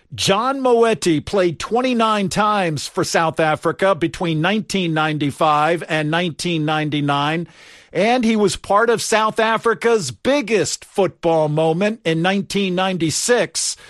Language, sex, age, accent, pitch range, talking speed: English, male, 50-69, American, 165-210 Hz, 105 wpm